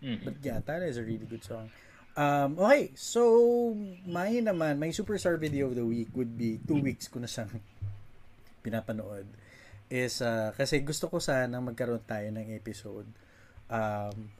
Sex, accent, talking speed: male, native, 160 wpm